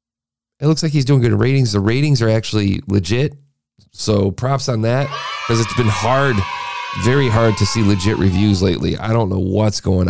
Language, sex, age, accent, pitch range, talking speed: English, male, 30-49, American, 95-120 Hz, 190 wpm